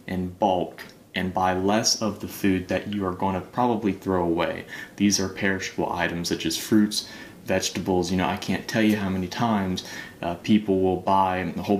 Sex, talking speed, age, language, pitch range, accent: male, 200 wpm, 30-49, English, 90-105 Hz, American